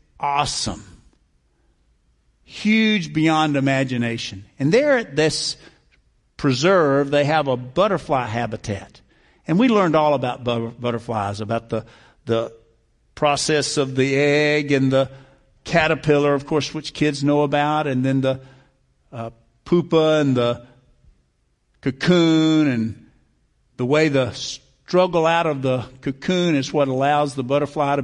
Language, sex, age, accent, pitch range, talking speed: English, male, 50-69, American, 130-165 Hz, 125 wpm